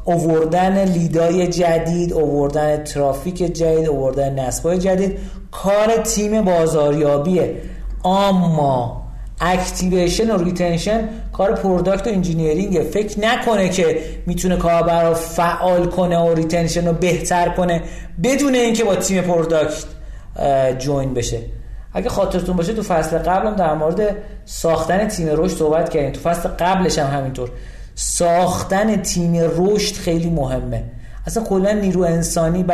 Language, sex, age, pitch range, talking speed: Persian, male, 40-59, 155-195 Hz, 120 wpm